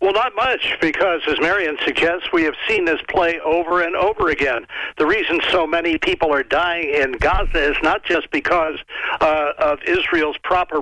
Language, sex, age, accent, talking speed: English, male, 60-79, American, 185 wpm